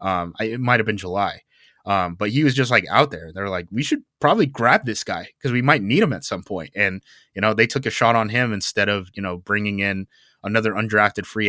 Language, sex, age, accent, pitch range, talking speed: English, male, 20-39, American, 100-125 Hz, 250 wpm